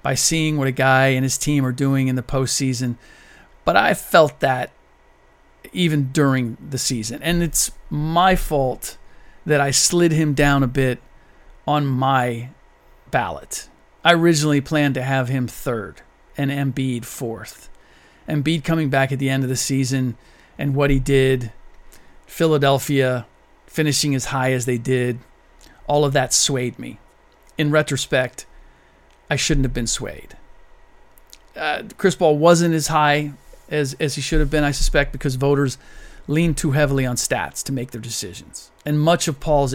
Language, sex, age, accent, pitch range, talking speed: English, male, 40-59, American, 130-155 Hz, 160 wpm